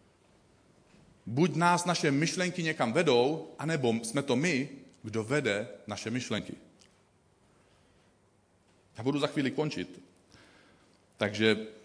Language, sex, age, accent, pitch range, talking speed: Czech, male, 40-59, native, 110-150 Hz, 100 wpm